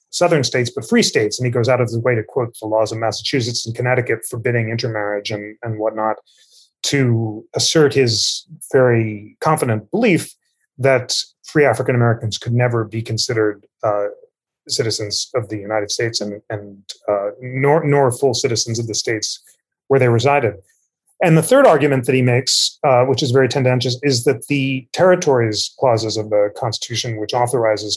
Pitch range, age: 115-135 Hz, 30-49